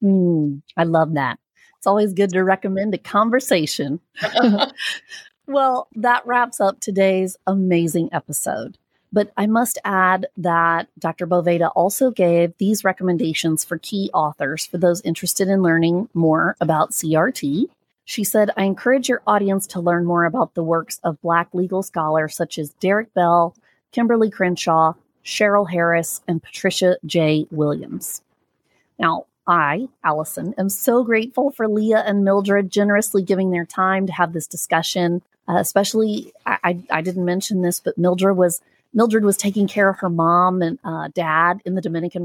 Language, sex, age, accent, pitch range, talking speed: English, female, 30-49, American, 170-215 Hz, 155 wpm